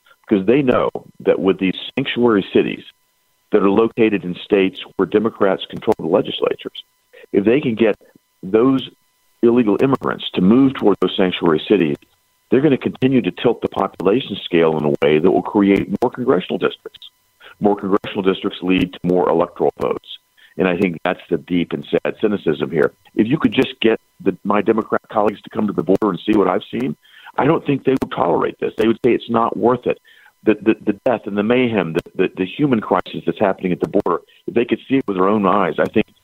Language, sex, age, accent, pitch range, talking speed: English, male, 50-69, American, 95-130 Hz, 210 wpm